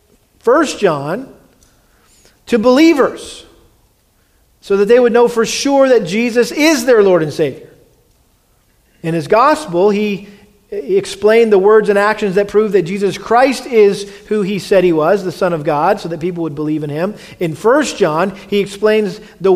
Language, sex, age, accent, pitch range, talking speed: English, male, 40-59, American, 165-220 Hz, 170 wpm